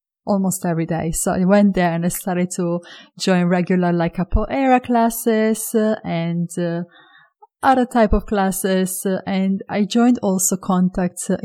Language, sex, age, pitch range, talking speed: English, female, 30-49, 180-215 Hz, 160 wpm